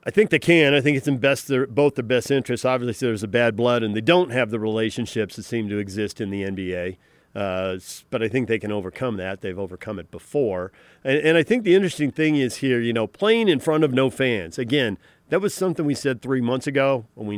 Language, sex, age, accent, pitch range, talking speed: English, male, 40-59, American, 110-145 Hz, 245 wpm